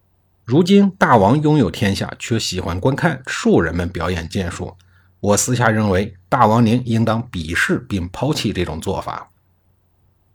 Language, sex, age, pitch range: Chinese, male, 50-69, 95-130 Hz